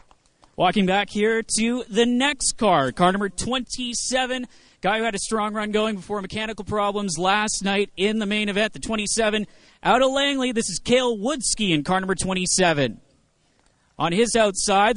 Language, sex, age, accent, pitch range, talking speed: English, male, 30-49, American, 195-240 Hz, 170 wpm